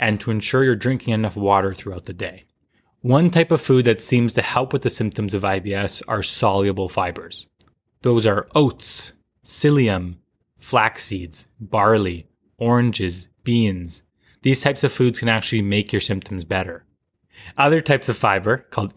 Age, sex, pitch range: 20-39, male, 100-125 Hz